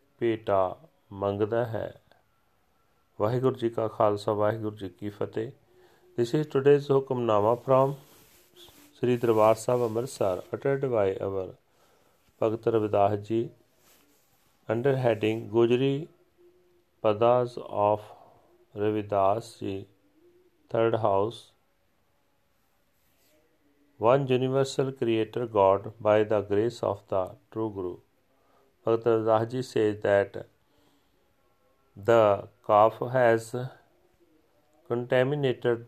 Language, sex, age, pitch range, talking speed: Punjabi, male, 40-59, 105-130 Hz, 90 wpm